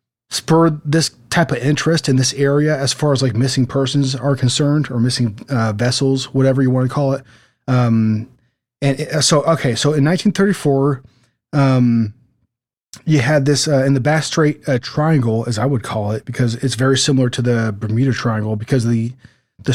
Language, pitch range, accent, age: English, 120-145 Hz, American, 30-49